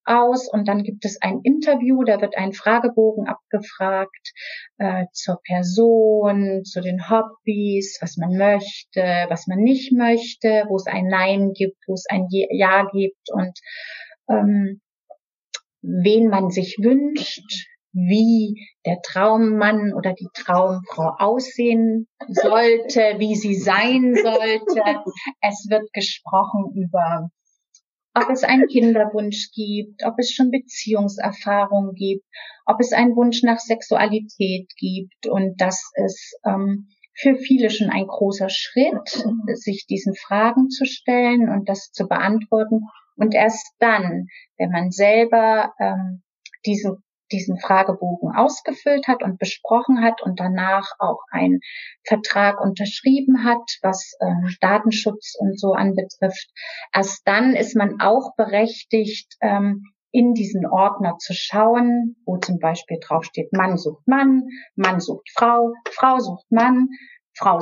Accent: German